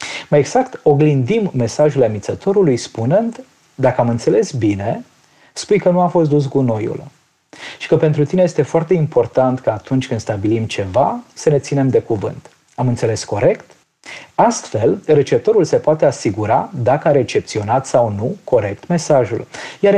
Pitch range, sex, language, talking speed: 130-195 Hz, male, Romanian, 150 wpm